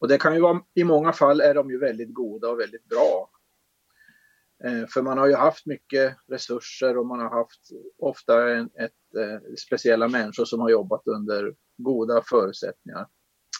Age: 30-49